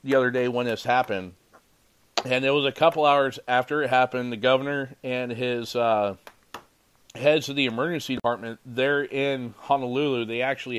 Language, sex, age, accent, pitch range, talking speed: English, male, 40-59, American, 125-185 Hz, 165 wpm